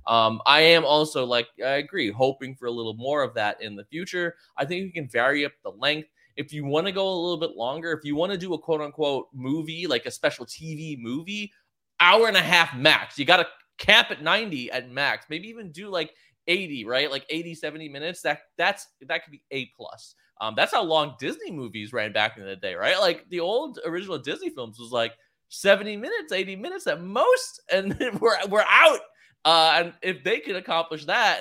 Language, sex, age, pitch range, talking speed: English, male, 20-39, 130-190 Hz, 220 wpm